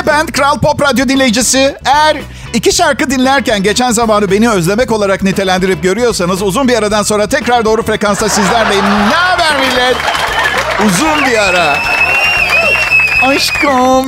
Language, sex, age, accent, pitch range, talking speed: Turkish, male, 50-69, native, 200-260 Hz, 130 wpm